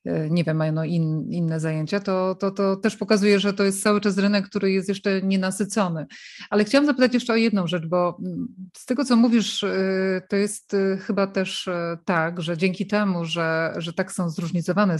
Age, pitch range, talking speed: 30-49, 170-205 Hz, 180 wpm